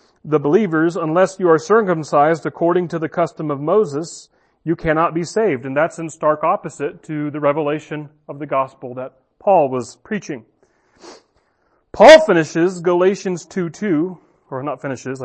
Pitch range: 155-210 Hz